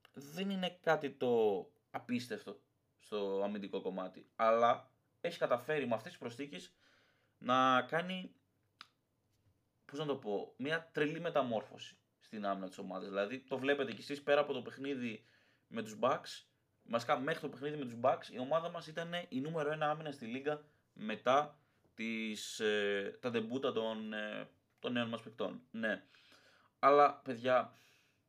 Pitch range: 110-145 Hz